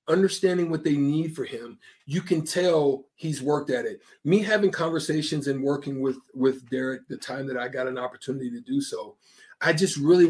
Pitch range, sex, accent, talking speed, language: 140-190 Hz, male, American, 200 wpm, English